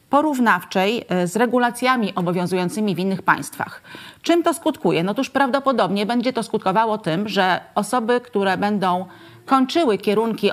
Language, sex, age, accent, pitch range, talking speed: Polish, female, 40-59, native, 185-240 Hz, 130 wpm